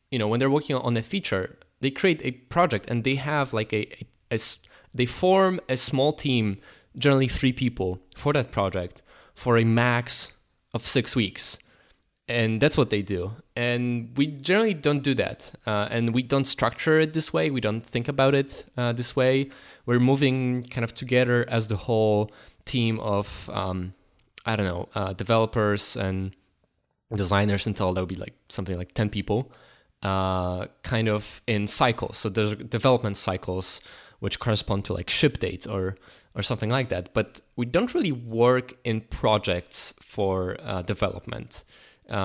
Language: English